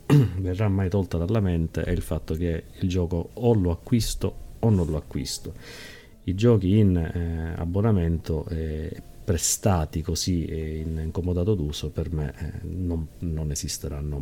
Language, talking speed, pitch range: Italian, 150 wpm, 85-105 Hz